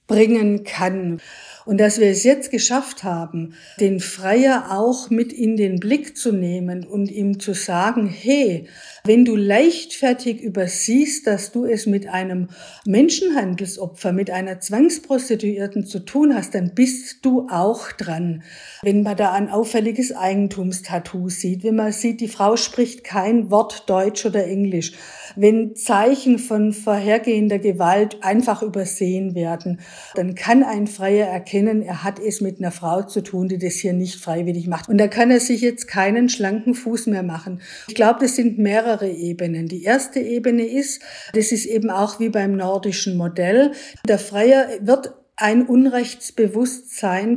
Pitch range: 190-245 Hz